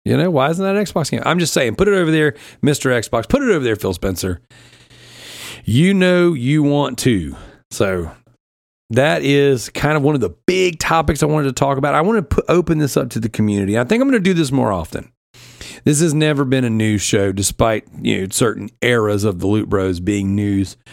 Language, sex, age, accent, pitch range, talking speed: English, male, 40-59, American, 115-155 Hz, 230 wpm